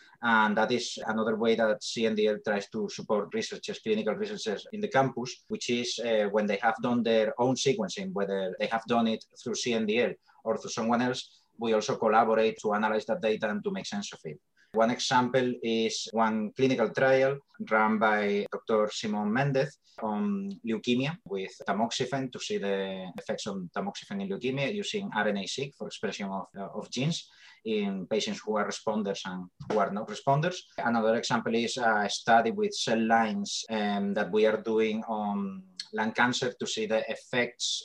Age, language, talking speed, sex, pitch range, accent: 30-49, English, 180 wpm, male, 110-135 Hz, Spanish